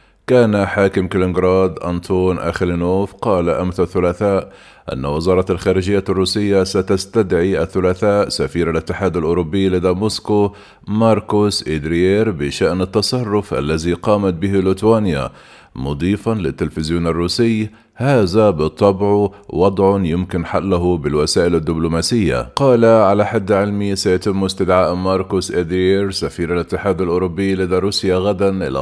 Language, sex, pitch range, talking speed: Arabic, male, 90-105 Hz, 110 wpm